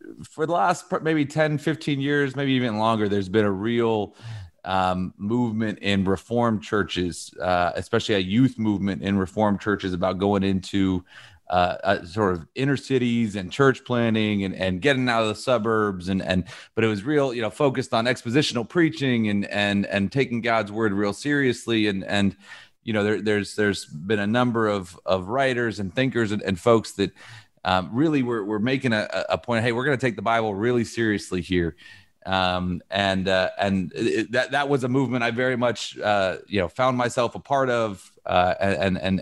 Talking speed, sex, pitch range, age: 190 wpm, male, 100-130 Hz, 30-49